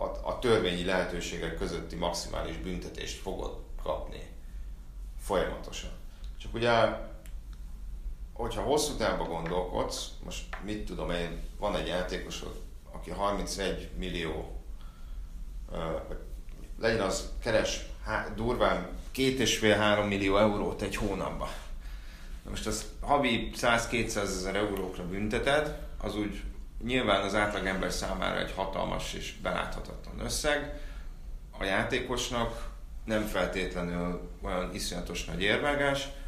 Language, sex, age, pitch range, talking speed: Hungarian, male, 30-49, 85-110 Hz, 105 wpm